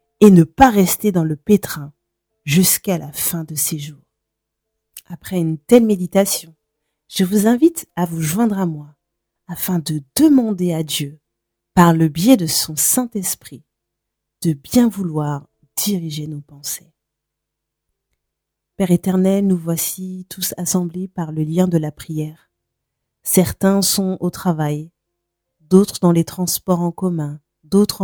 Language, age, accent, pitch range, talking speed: French, 30-49, French, 155-200 Hz, 140 wpm